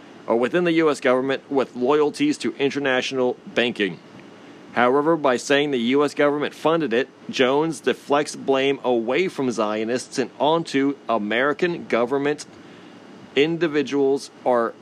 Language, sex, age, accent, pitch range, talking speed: English, male, 40-59, American, 130-155 Hz, 120 wpm